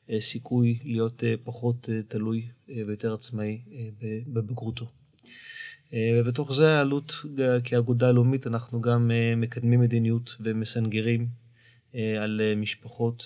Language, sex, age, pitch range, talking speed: Hebrew, male, 30-49, 110-120 Hz, 85 wpm